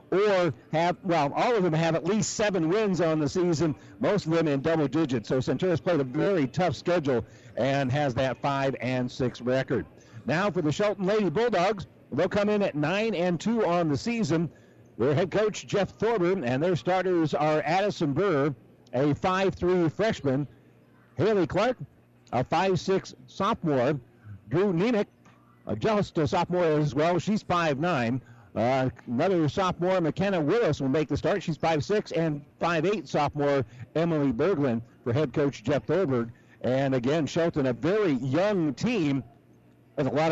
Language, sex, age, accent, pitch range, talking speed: English, male, 60-79, American, 135-180 Hz, 165 wpm